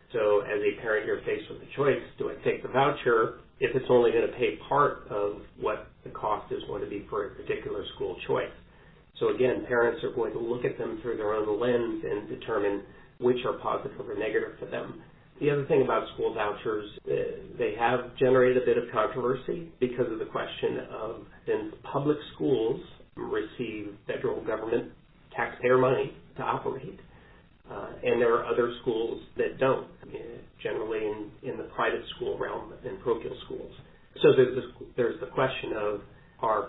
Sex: male